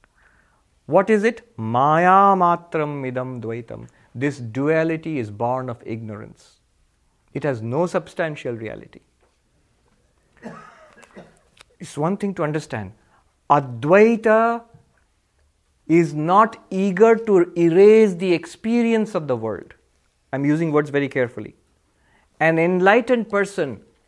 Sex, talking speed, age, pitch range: male, 105 wpm, 50-69, 130-205 Hz